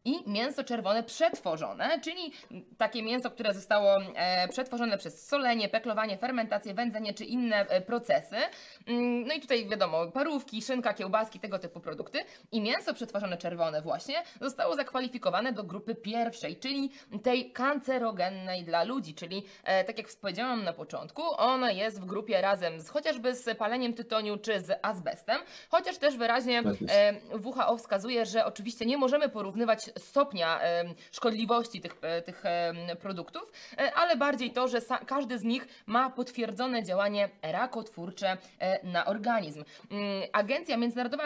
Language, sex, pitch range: Polish, female, 200-255 Hz